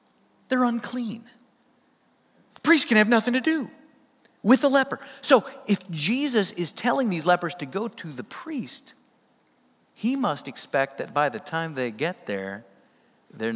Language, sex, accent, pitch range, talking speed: English, male, American, 165-245 Hz, 155 wpm